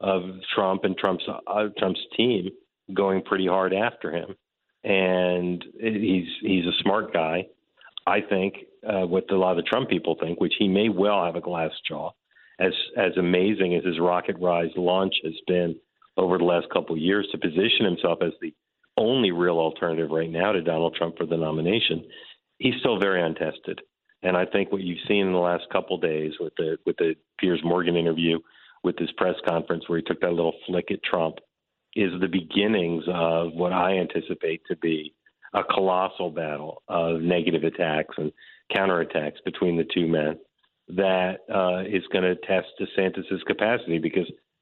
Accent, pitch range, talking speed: American, 85-95 Hz, 180 wpm